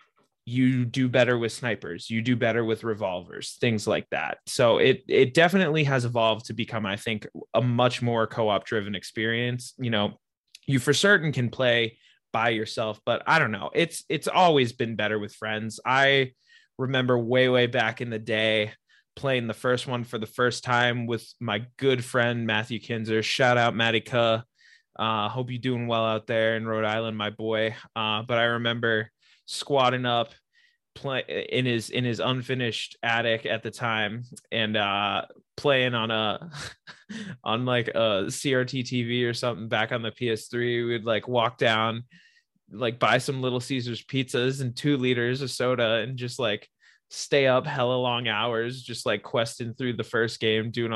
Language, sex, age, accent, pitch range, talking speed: English, male, 20-39, American, 110-125 Hz, 175 wpm